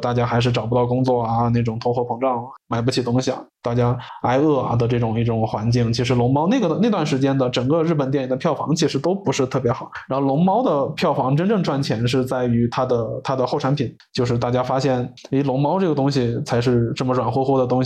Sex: male